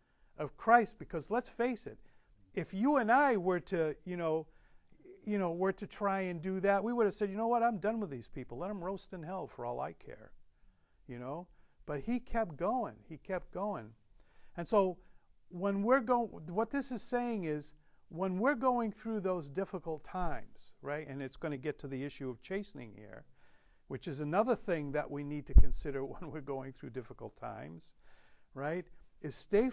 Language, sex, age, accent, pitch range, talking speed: English, male, 50-69, American, 145-205 Hz, 200 wpm